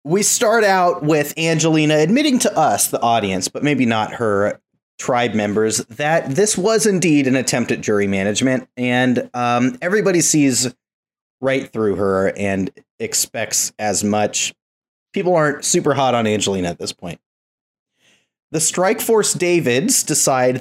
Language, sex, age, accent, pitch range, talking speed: English, male, 30-49, American, 120-165 Hz, 145 wpm